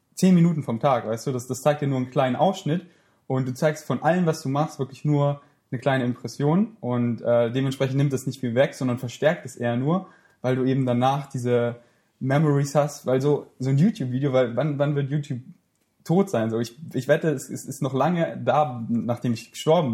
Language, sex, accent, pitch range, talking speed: German, male, German, 125-155 Hz, 215 wpm